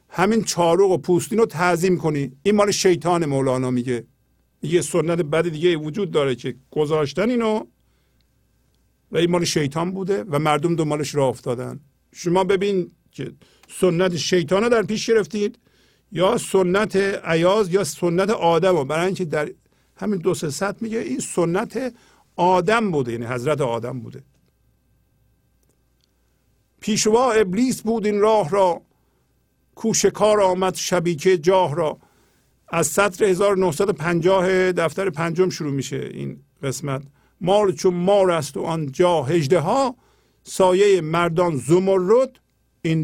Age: 50-69